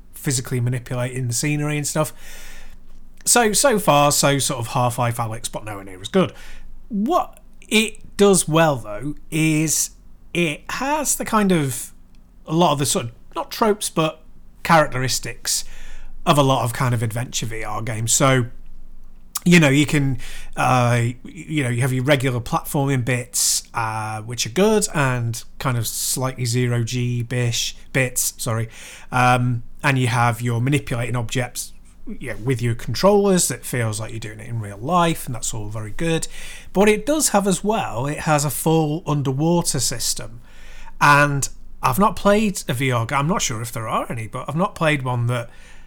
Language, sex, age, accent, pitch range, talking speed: English, male, 30-49, British, 120-155 Hz, 175 wpm